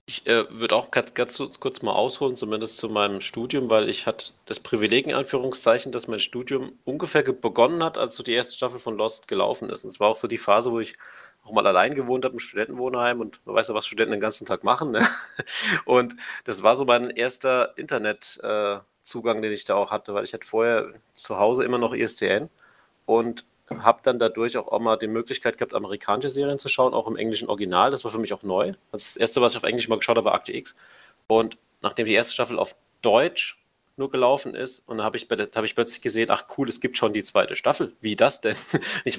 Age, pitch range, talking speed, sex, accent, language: 30-49, 110-125 Hz, 225 wpm, male, German, German